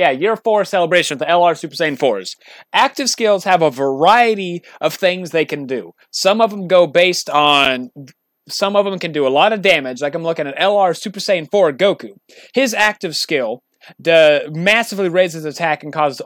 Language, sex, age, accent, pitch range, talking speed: English, male, 30-49, American, 150-195 Hz, 195 wpm